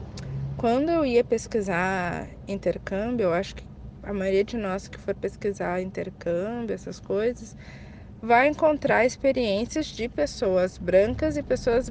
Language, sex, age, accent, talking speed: Portuguese, female, 20-39, Brazilian, 130 wpm